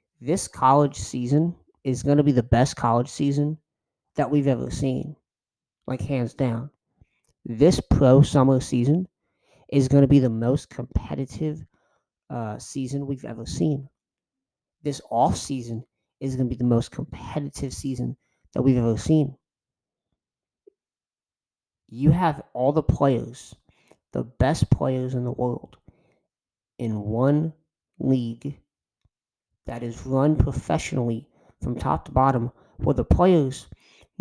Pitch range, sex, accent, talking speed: 120-140 Hz, male, American, 135 wpm